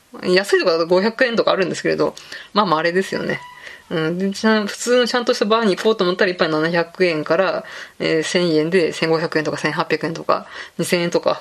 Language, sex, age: Japanese, female, 20-39